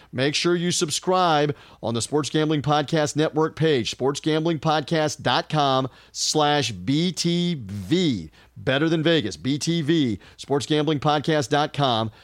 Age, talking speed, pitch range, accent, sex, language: 40-59, 95 wpm, 130-170 Hz, American, male, English